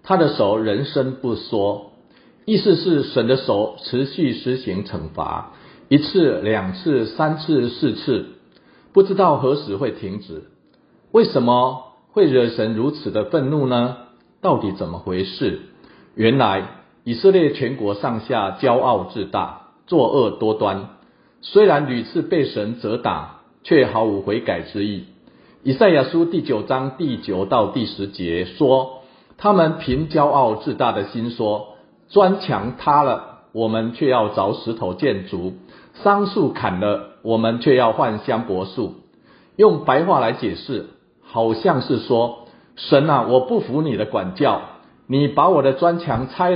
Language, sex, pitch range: Chinese, male, 110-155 Hz